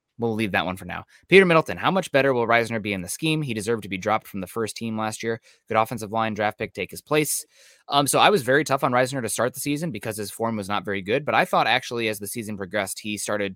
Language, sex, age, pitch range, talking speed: English, male, 20-39, 100-125 Hz, 290 wpm